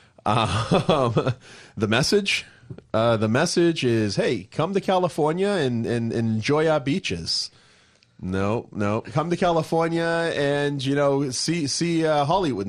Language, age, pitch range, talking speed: English, 30-49, 90-115 Hz, 140 wpm